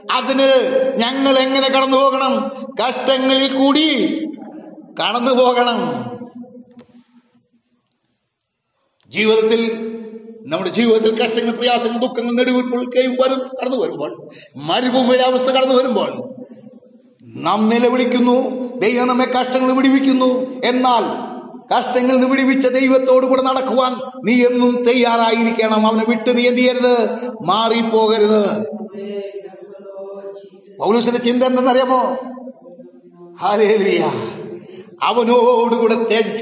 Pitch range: 215-255 Hz